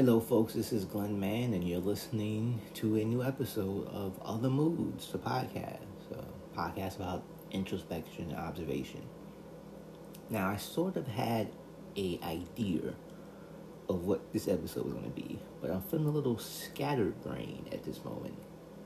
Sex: male